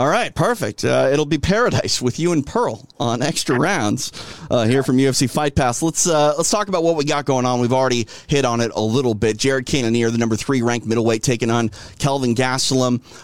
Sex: male